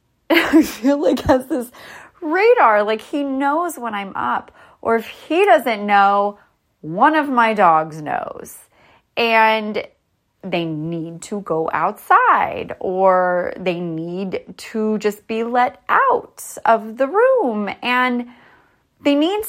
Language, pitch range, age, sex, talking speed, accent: English, 195-270 Hz, 30-49, female, 130 wpm, American